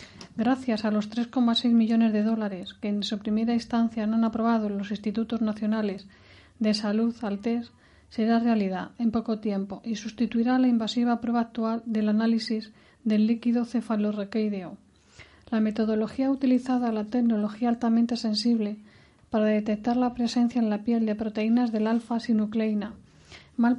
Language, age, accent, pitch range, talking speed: Spanish, 40-59, Spanish, 215-235 Hz, 150 wpm